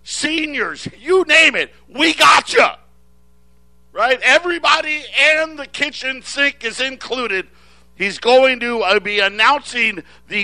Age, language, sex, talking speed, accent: 50-69, English, male, 125 wpm, American